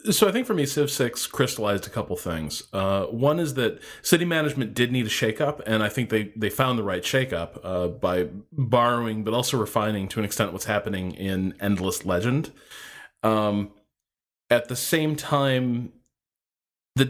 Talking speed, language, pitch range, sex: 185 wpm, English, 100-130 Hz, male